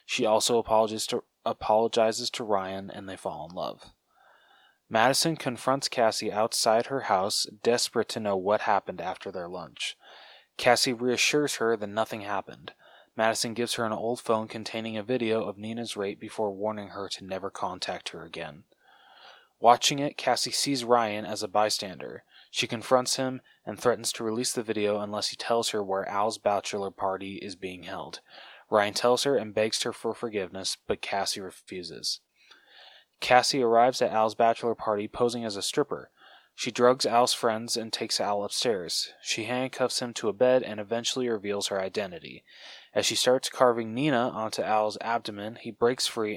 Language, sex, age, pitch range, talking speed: English, male, 20-39, 105-120 Hz, 170 wpm